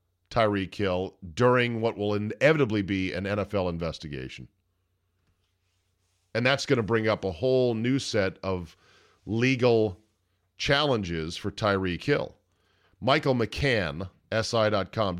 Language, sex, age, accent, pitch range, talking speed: English, male, 40-59, American, 90-125 Hz, 115 wpm